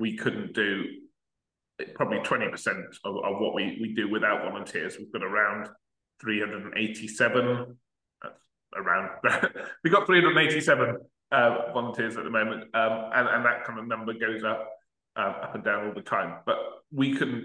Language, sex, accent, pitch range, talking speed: English, male, British, 110-135 Hz, 175 wpm